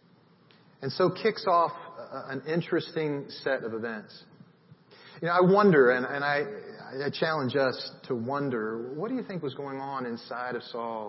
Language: English